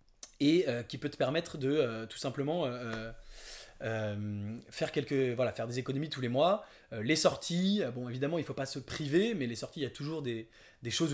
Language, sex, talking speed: English, male, 225 wpm